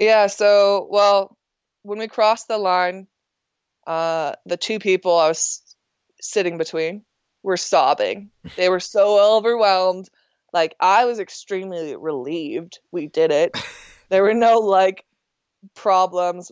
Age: 20-39